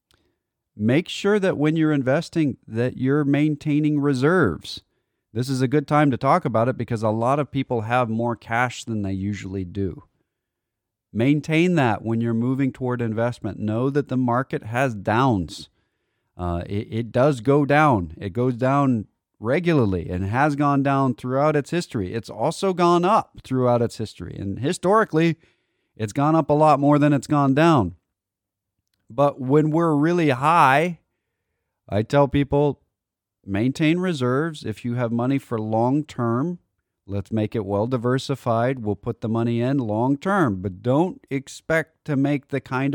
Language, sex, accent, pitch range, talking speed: English, male, American, 105-140 Hz, 160 wpm